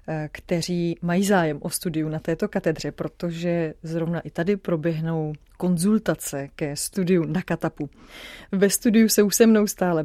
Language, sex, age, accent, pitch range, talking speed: Czech, female, 30-49, native, 160-185 Hz, 150 wpm